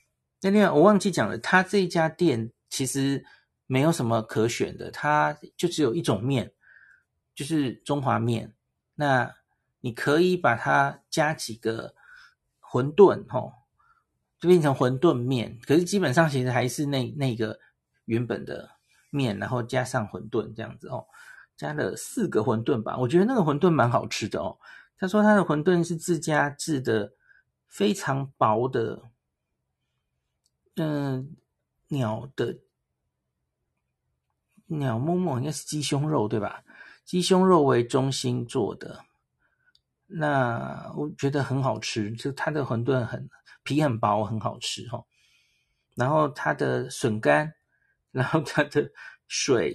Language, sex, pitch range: Chinese, male, 120-160 Hz